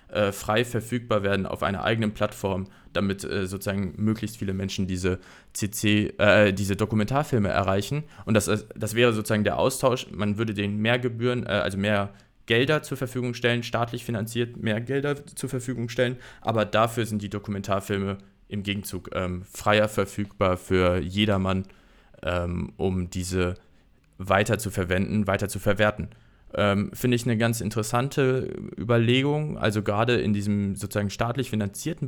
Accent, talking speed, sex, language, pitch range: German, 150 wpm, male, German, 100-120 Hz